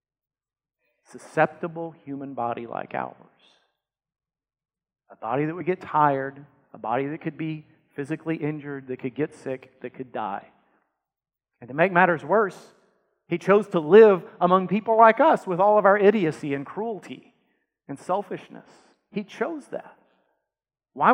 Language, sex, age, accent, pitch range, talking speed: English, male, 40-59, American, 145-195 Hz, 145 wpm